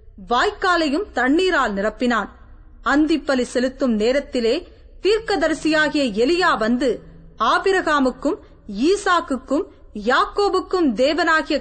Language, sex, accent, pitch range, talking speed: Tamil, female, native, 255-350 Hz, 65 wpm